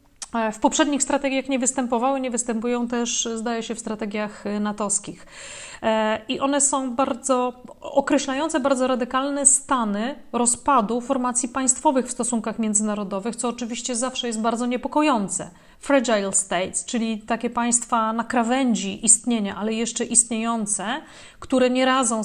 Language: Polish